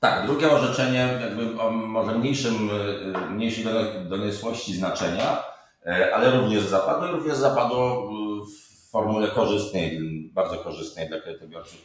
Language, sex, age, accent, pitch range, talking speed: Polish, male, 30-49, native, 100-125 Hz, 115 wpm